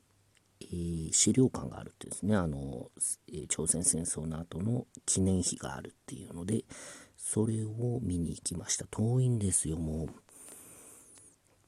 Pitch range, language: 85-115 Hz, Japanese